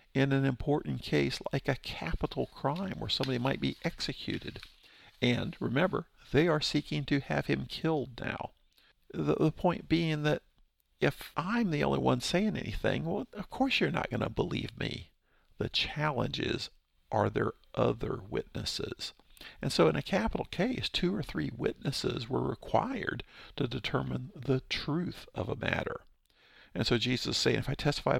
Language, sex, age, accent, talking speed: English, male, 50-69, American, 165 wpm